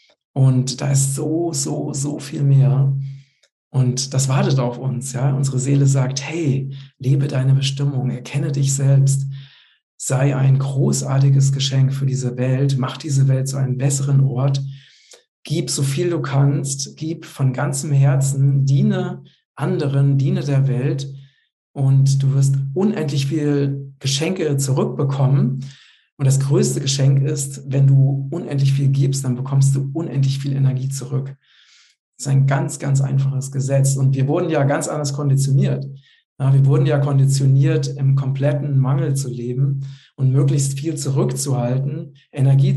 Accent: German